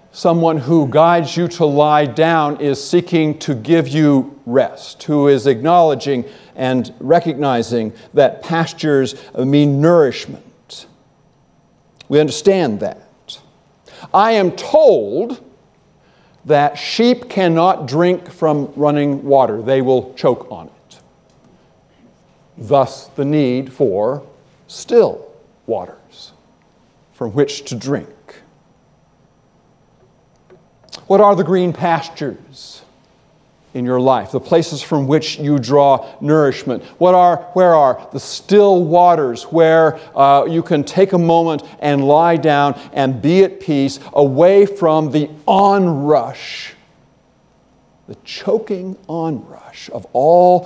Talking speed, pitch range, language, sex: 115 wpm, 140-175 Hz, English, male